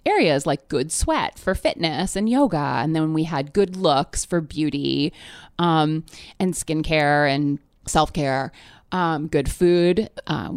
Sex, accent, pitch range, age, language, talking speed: female, American, 155-210 Hz, 30-49, English, 140 wpm